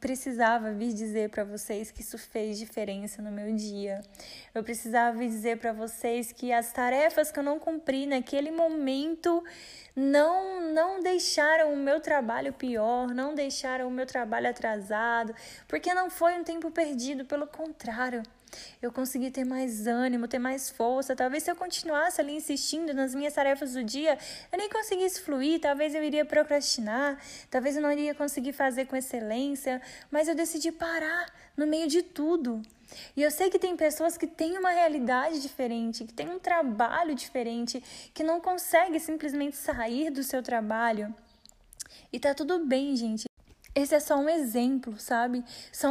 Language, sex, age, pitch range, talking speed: Portuguese, female, 10-29, 240-315 Hz, 165 wpm